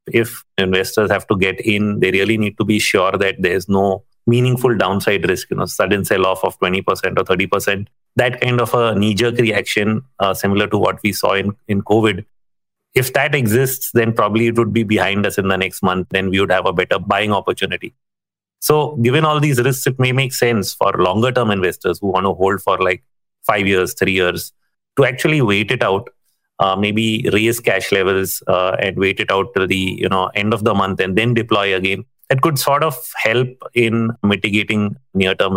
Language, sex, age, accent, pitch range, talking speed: English, male, 30-49, Indian, 95-120 Hz, 205 wpm